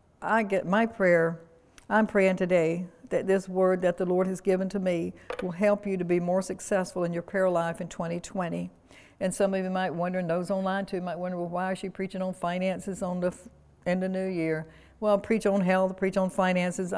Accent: American